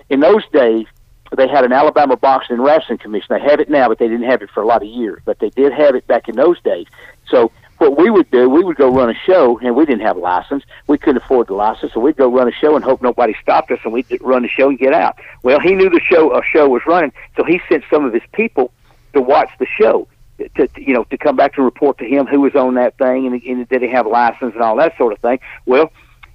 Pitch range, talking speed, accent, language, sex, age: 125-170 Hz, 285 wpm, American, English, male, 60-79